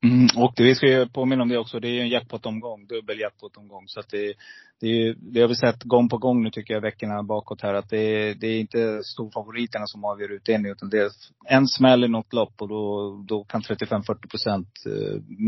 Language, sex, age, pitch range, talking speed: Swedish, male, 30-49, 110-125 Hz, 215 wpm